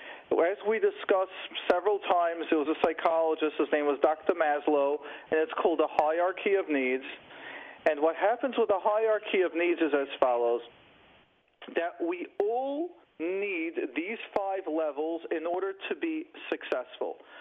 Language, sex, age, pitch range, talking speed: English, male, 40-59, 175-280 Hz, 150 wpm